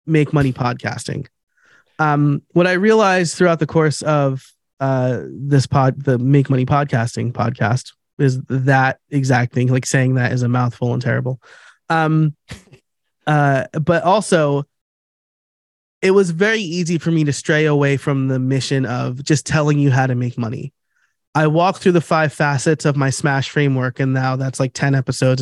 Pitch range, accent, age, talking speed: 130-160 Hz, American, 20-39, 170 wpm